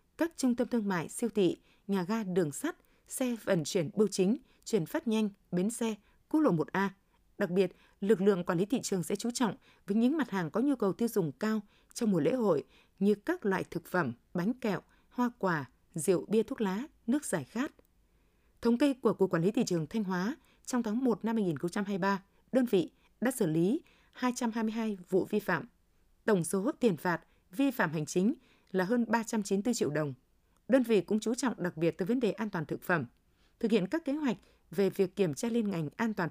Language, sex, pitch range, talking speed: Vietnamese, female, 185-235 Hz, 215 wpm